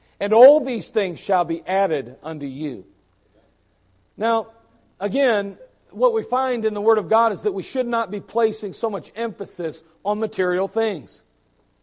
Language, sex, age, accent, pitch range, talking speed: English, male, 50-69, American, 185-235 Hz, 160 wpm